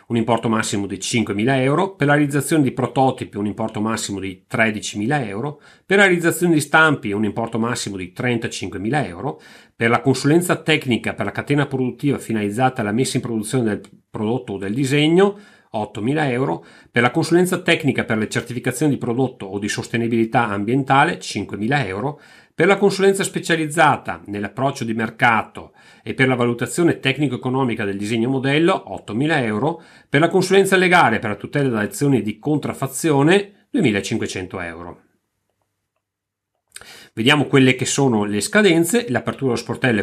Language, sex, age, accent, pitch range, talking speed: Italian, male, 40-59, native, 110-140 Hz, 155 wpm